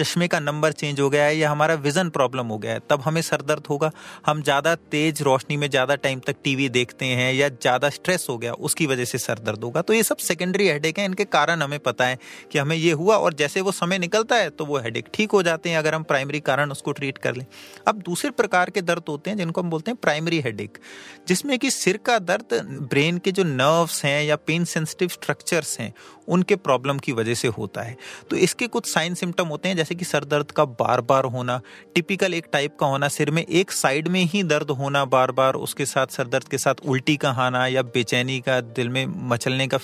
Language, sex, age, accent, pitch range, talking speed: Hindi, male, 30-49, native, 135-175 Hz, 230 wpm